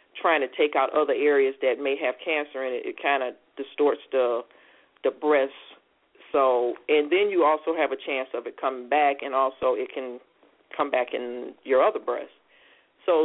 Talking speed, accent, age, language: 190 wpm, American, 40-59, English